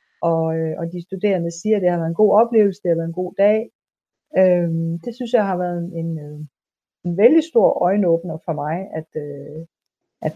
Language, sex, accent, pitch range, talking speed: Danish, female, native, 170-210 Hz, 205 wpm